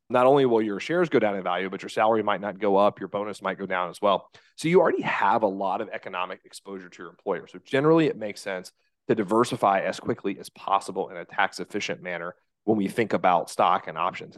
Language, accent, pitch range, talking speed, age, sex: English, American, 95-115 Hz, 240 wpm, 30-49, male